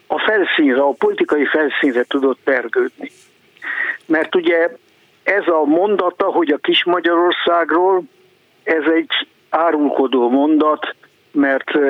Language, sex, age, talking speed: Hungarian, male, 60-79, 105 wpm